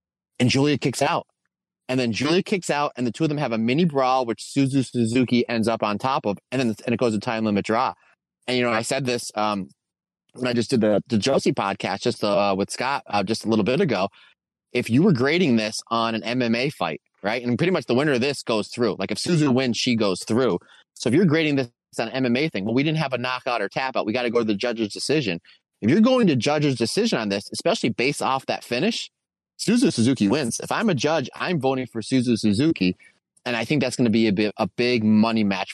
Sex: male